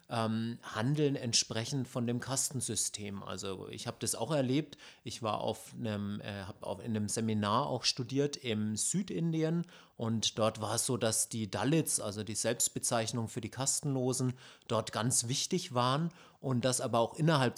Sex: male